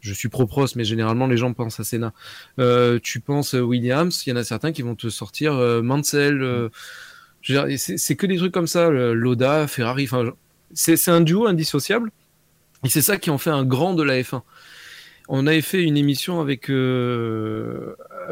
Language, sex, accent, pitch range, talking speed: French, male, French, 120-155 Hz, 205 wpm